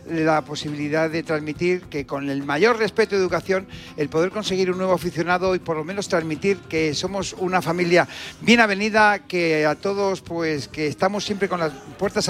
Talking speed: 185 wpm